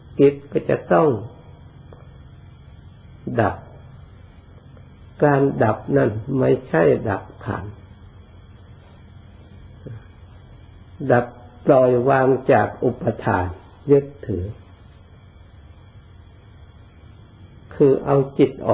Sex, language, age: male, Thai, 60-79